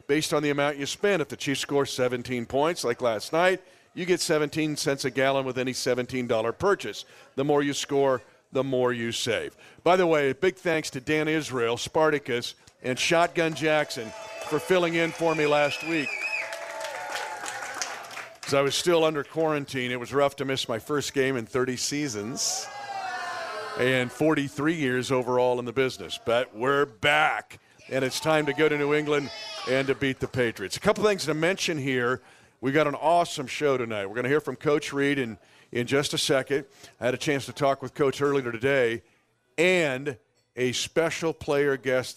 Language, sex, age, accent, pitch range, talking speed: English, male, 50-69, American, 125-155 Hz, 190 wpm